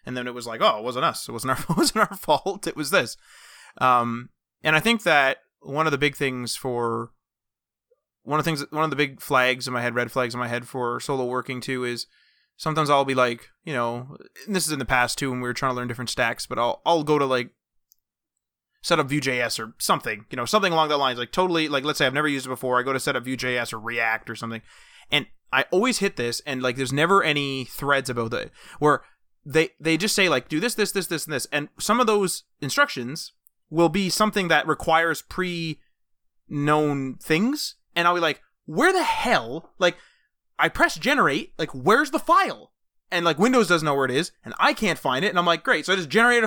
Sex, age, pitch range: male, 20-39, 125-180 Hz